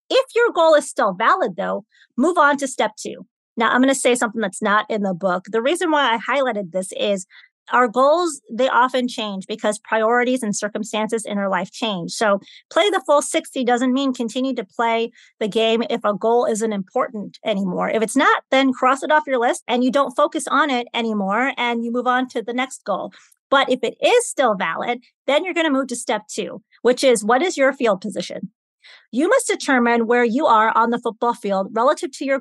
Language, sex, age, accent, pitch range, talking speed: English, female, 30-49, American, 220-285 Hz, 220 wpm